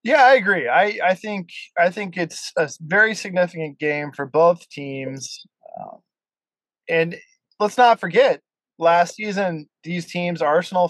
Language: English